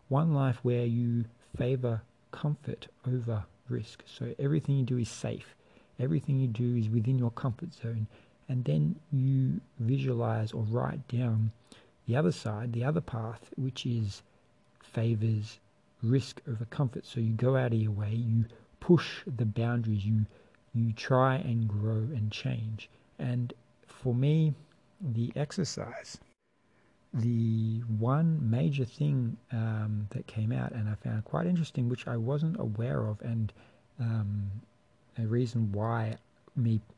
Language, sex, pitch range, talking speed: English, male, 110-130 Hz, 145 wpm